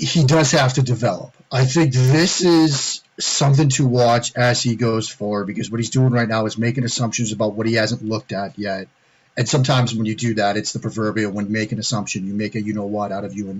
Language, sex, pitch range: English, male, 115-145 Hz